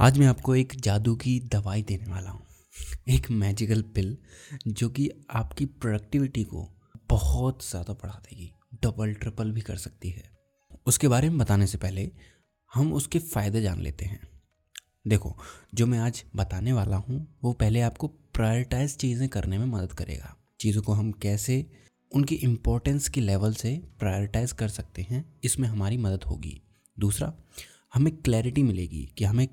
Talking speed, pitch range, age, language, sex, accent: 160 wpm, 100-130 Hz, 20-39, Hindi, male, native